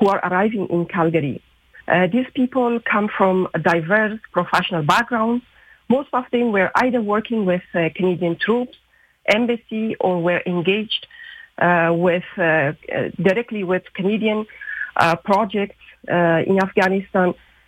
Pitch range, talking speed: 180-215 Hz, 135 wpm